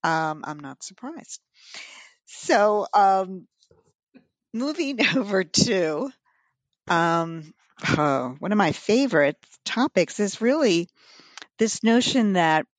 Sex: female